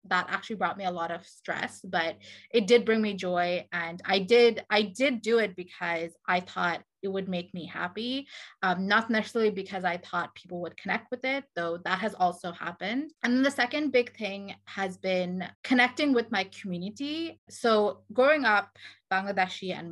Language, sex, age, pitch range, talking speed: English, female, 20-39, 180-210 Hz, 185 wpm